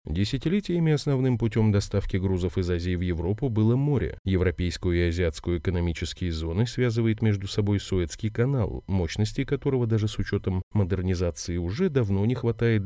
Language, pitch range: Russian, 90-120 Hz